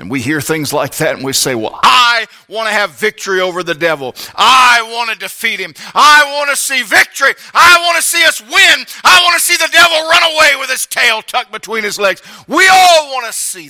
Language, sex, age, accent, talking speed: English, male, 50-69, American, 235 wpm